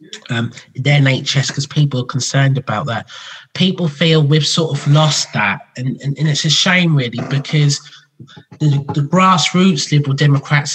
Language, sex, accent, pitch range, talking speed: English, male, British, 130-150 Hz, 160 wpm